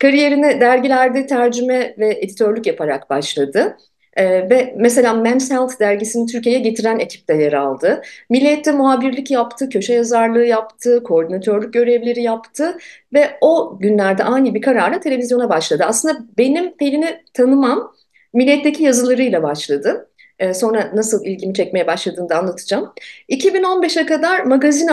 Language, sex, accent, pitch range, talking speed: Turkish, female, native, 195-275 Hz, 125 wpm